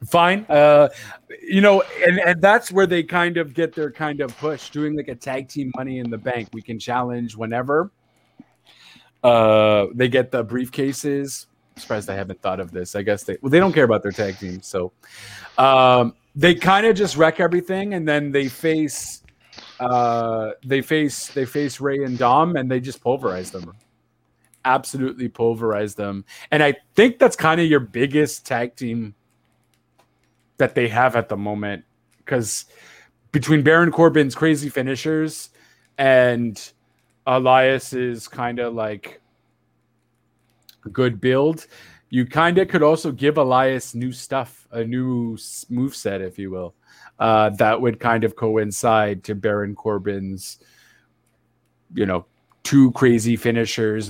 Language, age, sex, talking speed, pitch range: English, 30-49, male, 150 wpm, 110-145 Hz